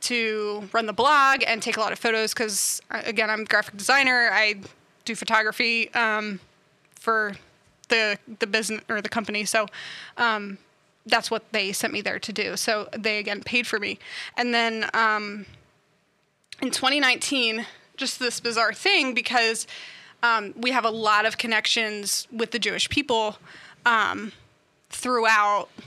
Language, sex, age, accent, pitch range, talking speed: English, female, 20-39, American, 215-240 Hz, 155 wpm